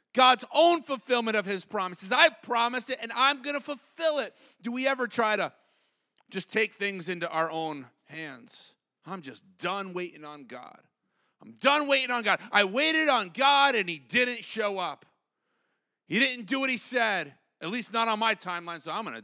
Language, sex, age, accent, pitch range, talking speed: English, male, 30-49, American, 180-245 Hz, 190 wpm